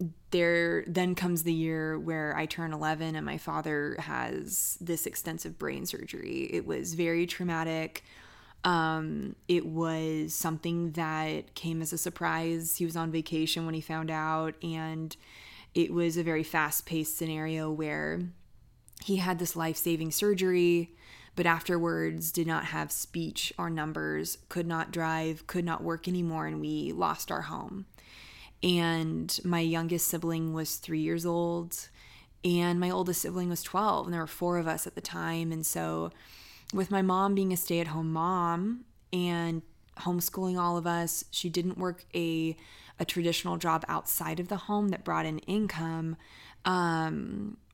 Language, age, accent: English, 20-39, American